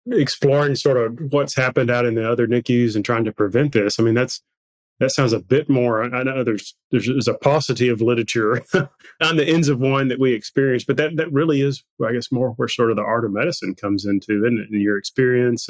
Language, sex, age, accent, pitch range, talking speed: English, male, 30-49, American, 110-130 Hz, 235 wpm